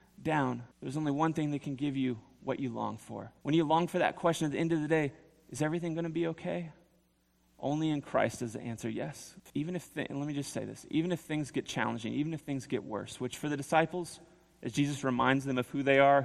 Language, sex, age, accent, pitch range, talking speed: English, male, 30-49, American, 120-150 Hz, 255 wpm